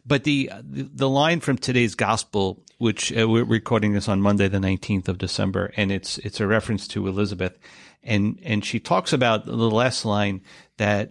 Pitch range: 100-120 Hz